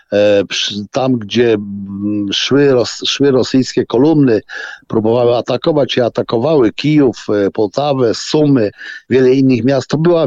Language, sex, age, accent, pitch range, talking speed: Polish, male, 50-69, native, 125-155 Hz, 105 wpm